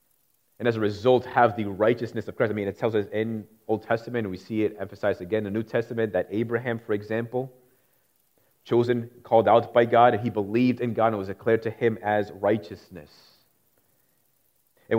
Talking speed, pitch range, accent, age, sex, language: 195 wpm, 100-120 Hz, American, 30-49, male, English